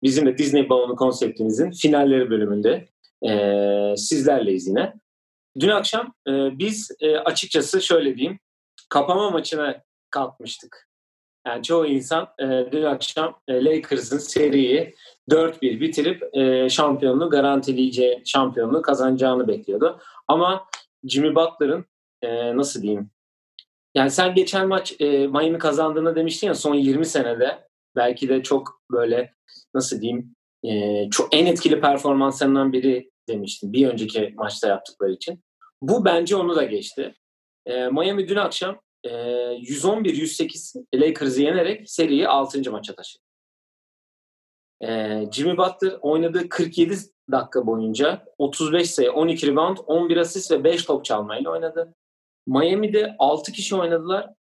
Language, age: Turkish, 40-59